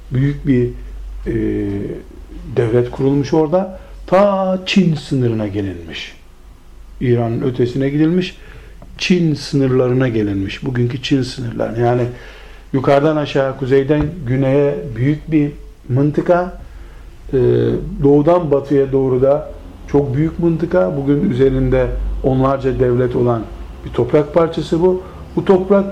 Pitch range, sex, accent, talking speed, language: 125-165 Hz, male, native, 110 wpm, Turkish